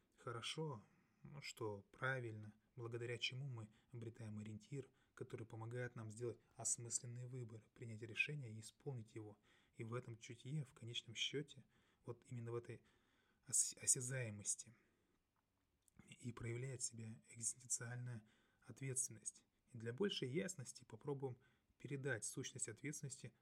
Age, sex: 20-39, male